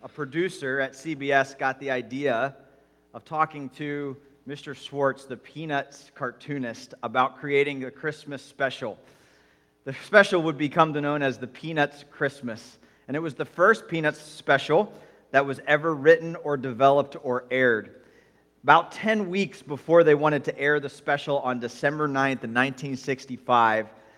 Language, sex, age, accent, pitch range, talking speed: English, male, 40-59, American, 130-155 Hz, 145 wpm